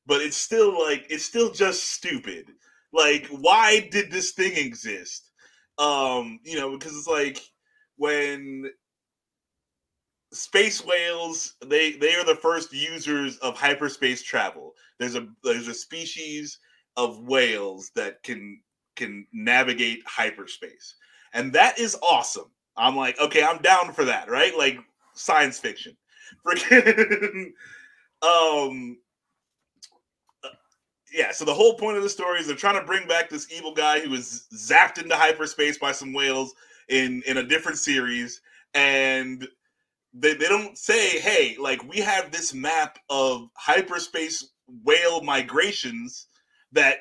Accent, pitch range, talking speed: American, 140-210 Hz, 135 wpm